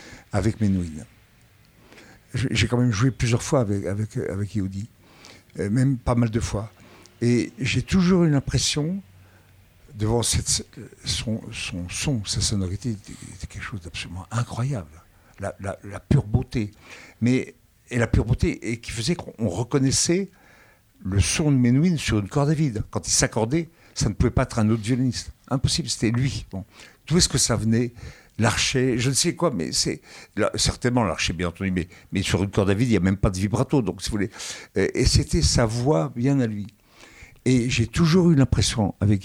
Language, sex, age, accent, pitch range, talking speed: French, male, 60-79, French, 100-130 Hz, 185 wpm